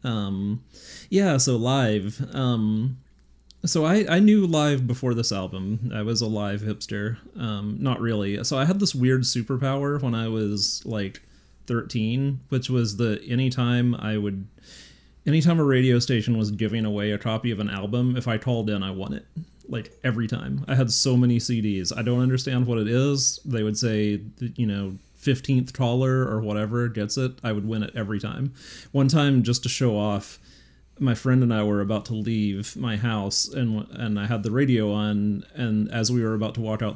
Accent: American